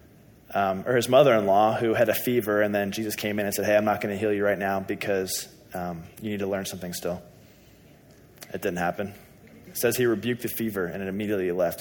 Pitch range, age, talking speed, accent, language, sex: 105-130 Hz, 20-39, 230 wpm, American, English, male